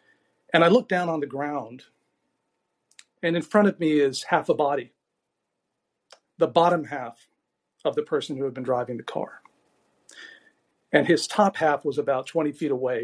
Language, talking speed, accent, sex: English, 170 wpm, American, male